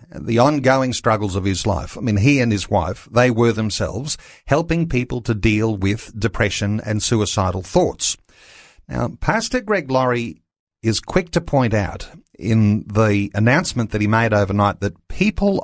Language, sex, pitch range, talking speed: English, male, 100-130 Hz, 160 wpm